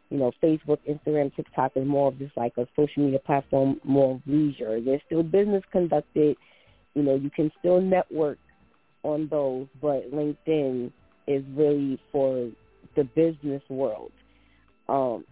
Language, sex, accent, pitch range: English, female, American, 140-170 Hz